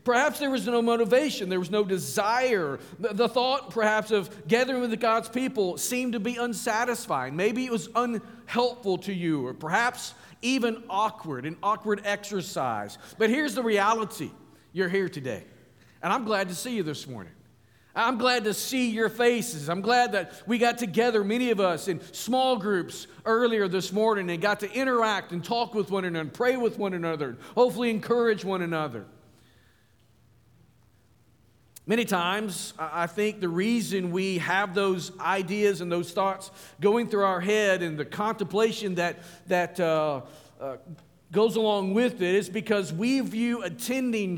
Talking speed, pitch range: 165 wpm, 170-225 Hz